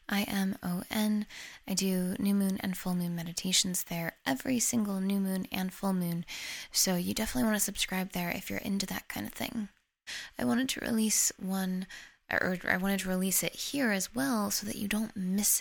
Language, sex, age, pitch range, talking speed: English, female, 10-29, 180-210 Hz, 190 wpm